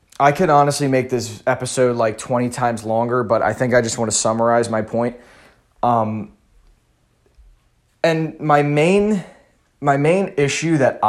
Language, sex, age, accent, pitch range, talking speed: English, male, 20-39, American, 120-155 Hz, 145 wpm